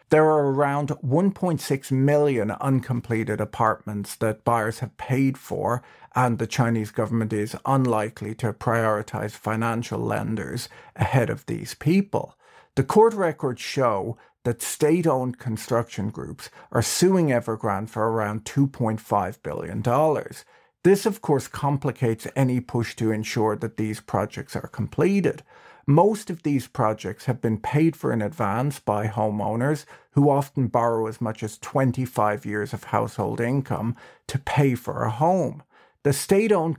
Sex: male